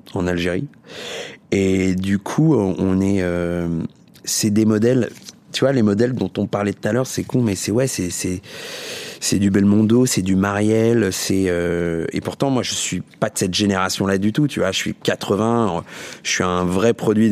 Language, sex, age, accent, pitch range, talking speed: French, male, 30-49, French, 90-110 Hz, 200 wpm